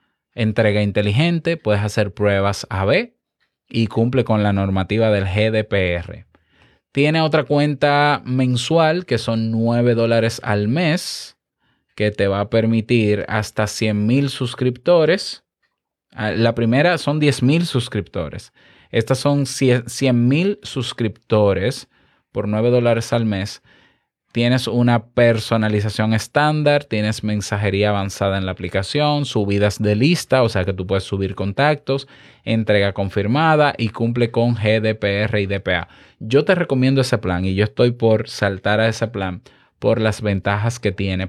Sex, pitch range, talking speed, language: male, 105-130 Hz, 135 wpm, Spanish